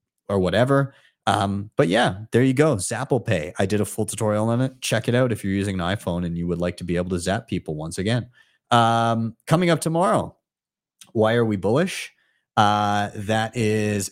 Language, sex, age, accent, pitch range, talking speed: English, male, 30-49, American, 95-125 Hz, 205 wpm